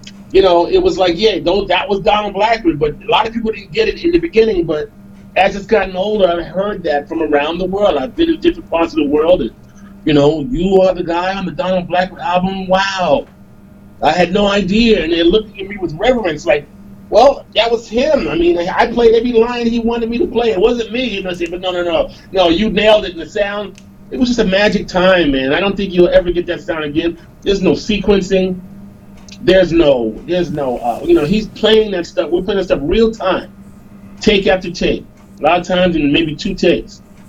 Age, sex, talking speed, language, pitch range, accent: 40-59, male, 235 wpm, English, 170-220 Hz, American